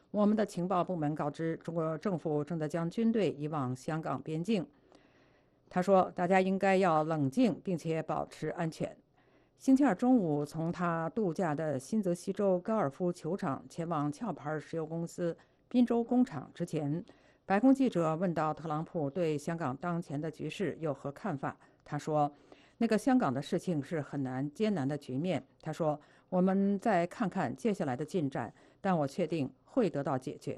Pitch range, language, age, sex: 150-195 Hz, English, 50-69, female